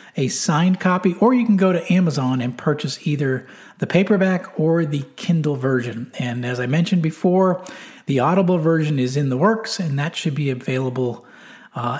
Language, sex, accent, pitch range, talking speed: English, male, American, 135-185 Hz, 180 wpm